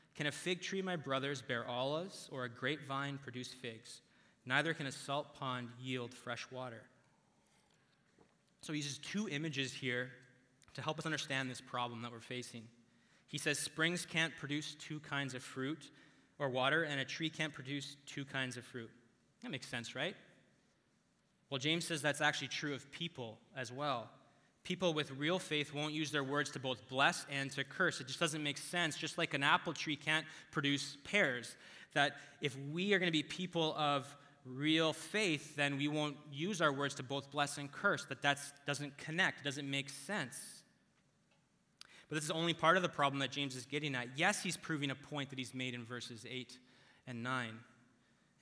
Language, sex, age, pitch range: English, male, 20-39, 130-155 Hz